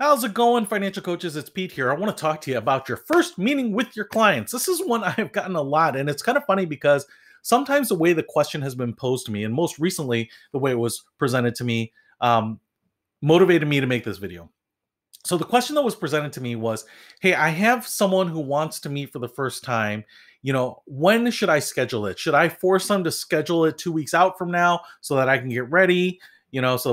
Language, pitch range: English, 130-185 Hz